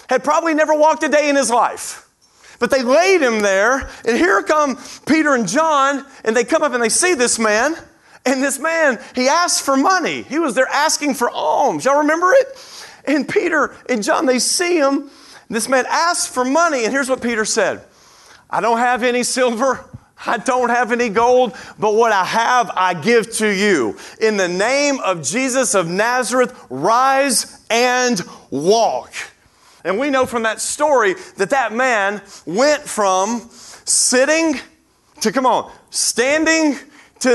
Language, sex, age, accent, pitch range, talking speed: English, male, 40-59, American, 235-300 Hz, 170 wpm